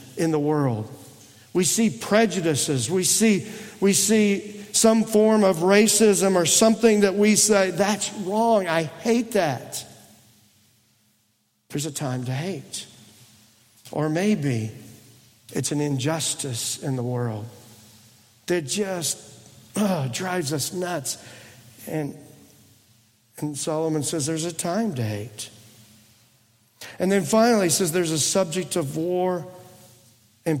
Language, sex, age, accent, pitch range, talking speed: English, male, 50-69, American, 125-195 Hz, 125 wpm